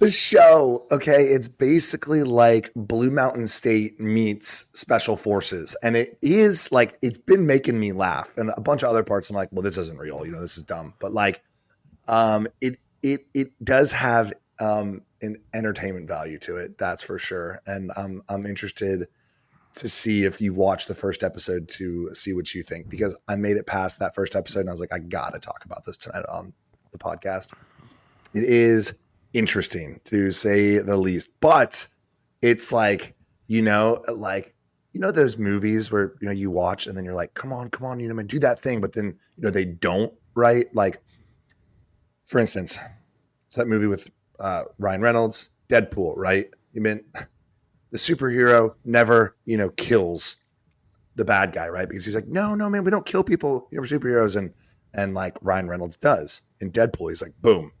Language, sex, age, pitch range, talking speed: English, male, 30-49, 100-125 Hz, 190 wpm